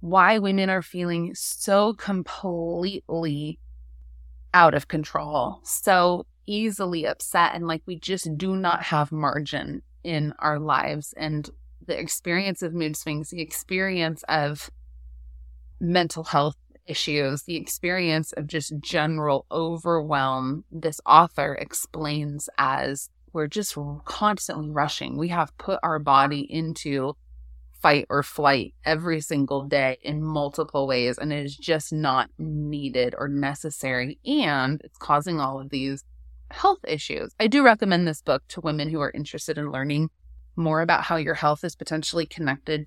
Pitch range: 140-175 Hz